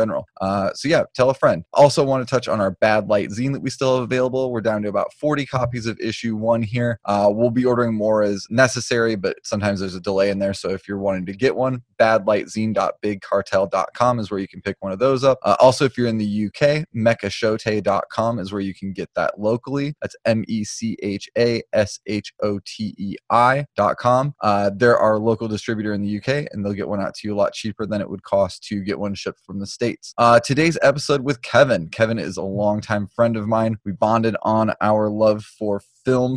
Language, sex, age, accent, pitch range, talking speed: English, male, 20-39, American, 105-125 Hz, 205 wpm